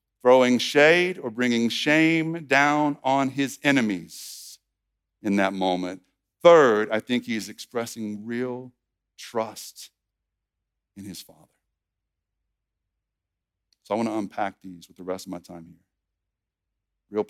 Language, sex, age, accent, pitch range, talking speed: English, male, 50-69, American, 100-150 Hz, 125 wpm